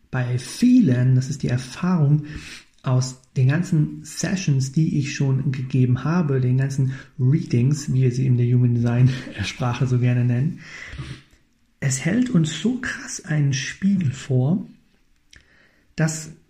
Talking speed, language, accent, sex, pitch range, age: 140 wpm, German, German, male, 130-160 Hz, 40-59